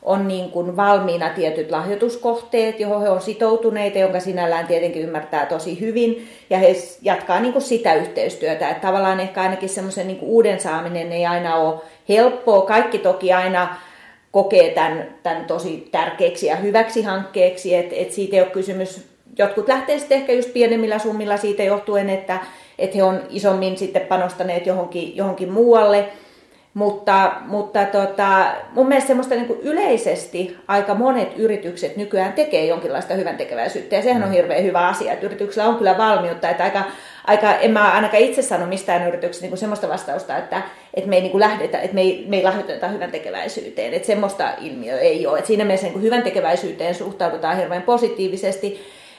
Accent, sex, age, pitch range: native, female, 30-49, 185-225 Hz